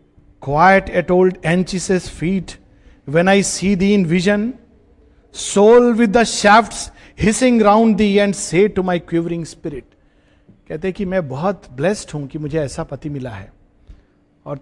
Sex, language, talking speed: male, Hindi, 150 wpm